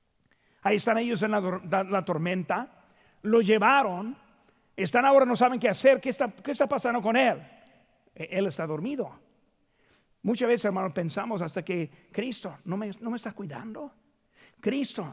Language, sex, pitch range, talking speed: Spanish, male, 185-275 Hz, 150 wpm